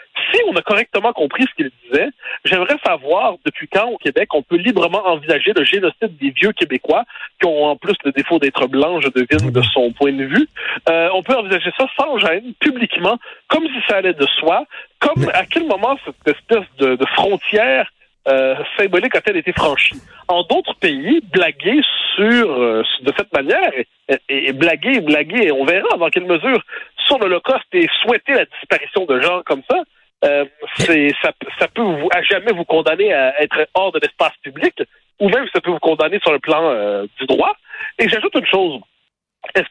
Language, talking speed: French, 195 wpm